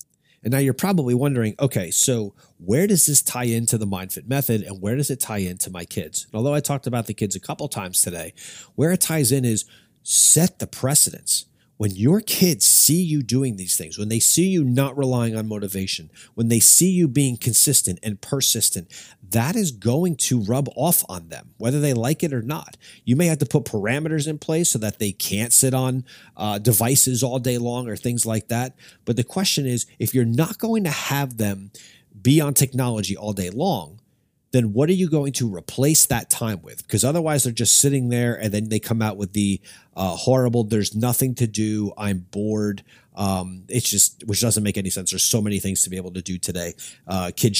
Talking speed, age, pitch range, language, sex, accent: 215 wpm, 40-59, 105-140 Hz, English, male, American